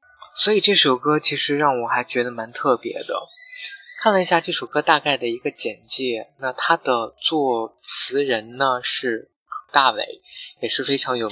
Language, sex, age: Chinese, male, 20-39